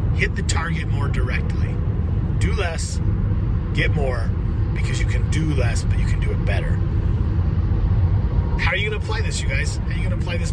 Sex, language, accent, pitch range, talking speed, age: male, English, American, 90-105 Hz, 205 wpm, 30-49